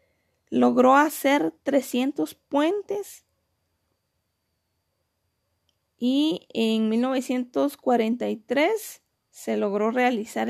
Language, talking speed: Spanish, 55 wpm